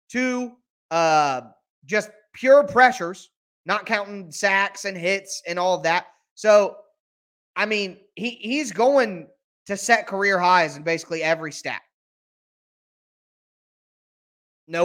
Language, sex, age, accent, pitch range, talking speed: English, male, 30-49, American, 175-230 Hz, 115 wpm